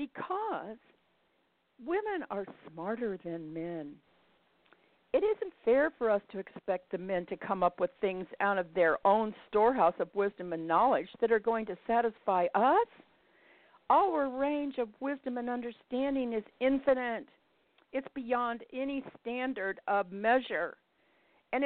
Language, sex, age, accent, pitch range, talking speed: English, female, 50-69, American, 175-255 Hz, 140 wpm